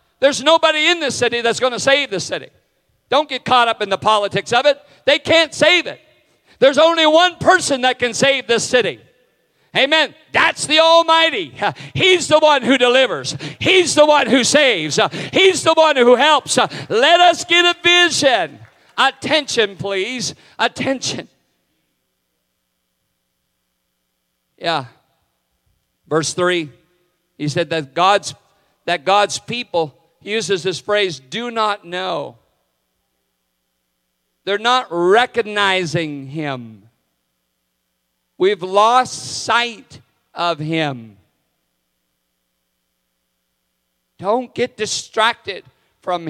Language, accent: English, American